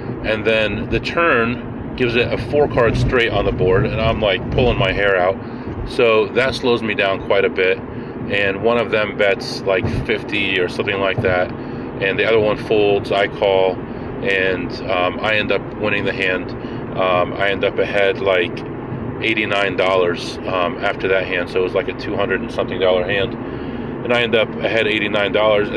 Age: 30-49